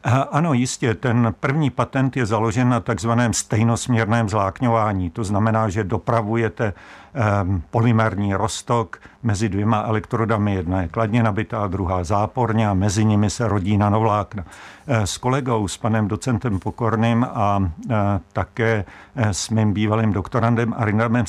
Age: 50-69